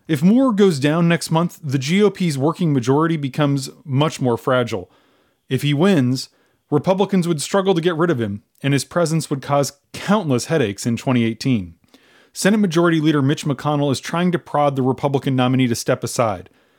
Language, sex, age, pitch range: English, male, 30-49, 120-155 Hz